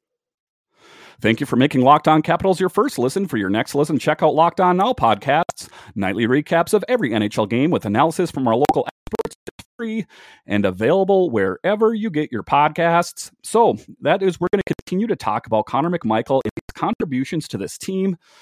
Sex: male